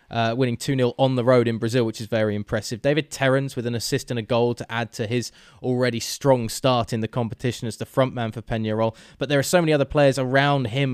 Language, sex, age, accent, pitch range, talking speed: English, male, 20-39, British, 110-130 Hz, 245 wpm